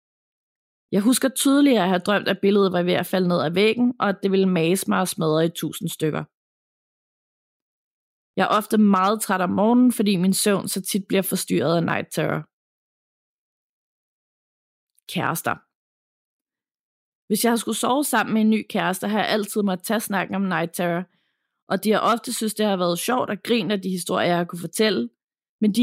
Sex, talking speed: female, 195 wpm